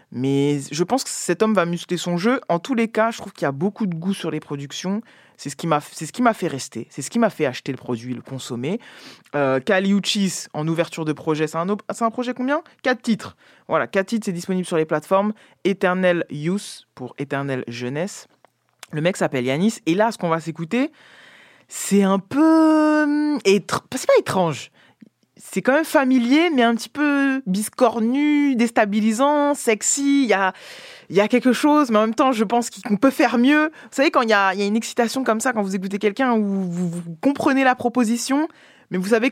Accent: French